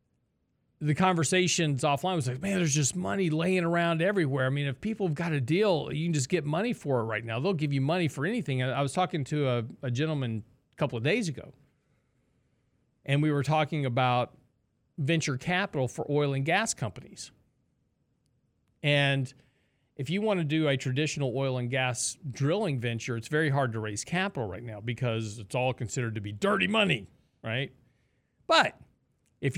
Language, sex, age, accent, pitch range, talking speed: English, male, 40-59, American, 125-170 Hz, 185 wpm